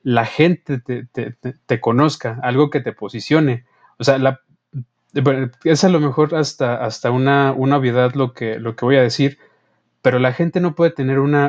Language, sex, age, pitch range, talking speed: Spanish, male, 30-49, 120-145 Hz, 195 wpm